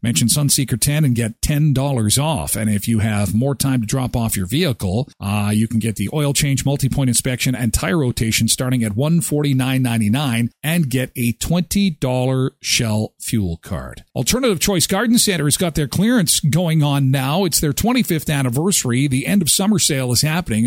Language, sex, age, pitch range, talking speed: English, male, 50-69, 120-170 Hz, 180 wpm